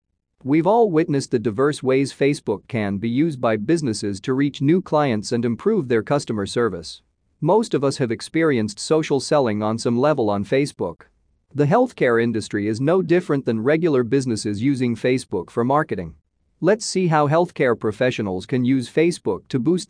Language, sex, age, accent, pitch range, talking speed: English, male, 40-59, American, 110-150 Hz, 170 wpm